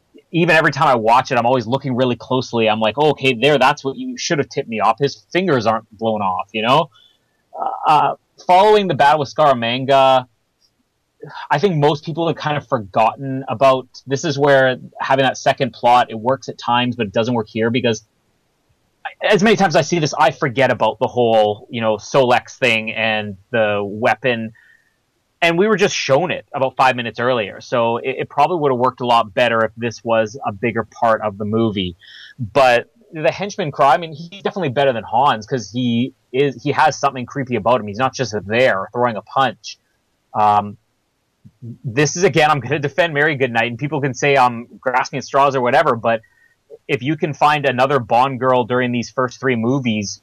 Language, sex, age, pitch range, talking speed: English, male, 30-49, 115-145 Hz, 200 wpm